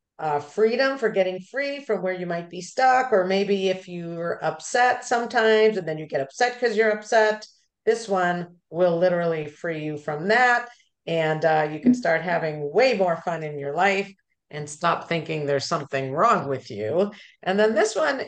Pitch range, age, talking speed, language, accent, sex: 160-210 Hz, 50-69, 185 wpm, English, American, female